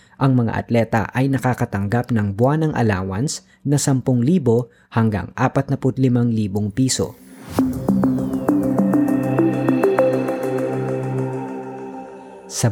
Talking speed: 75 wpm